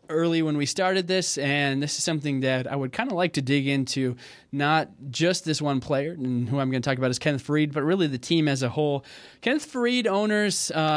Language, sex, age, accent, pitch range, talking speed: English, male, 20-39, American, 135-165 Hz, 235 wpm